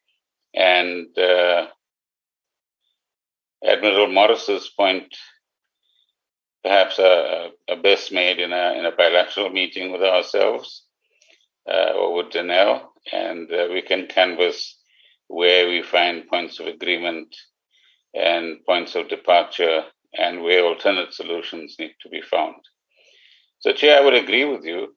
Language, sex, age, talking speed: English, male, 50-69, 125 wpm